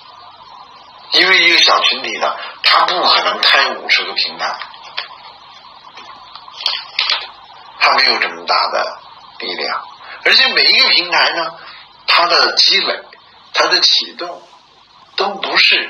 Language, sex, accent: Chinese, male, native